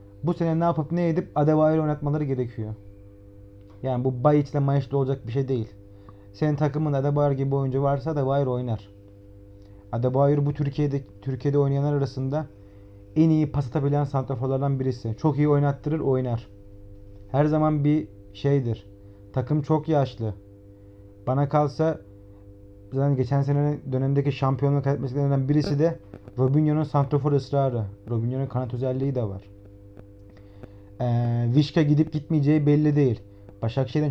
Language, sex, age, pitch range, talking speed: Turkish, male, 30-49, 100-150 Hz, 125 wpm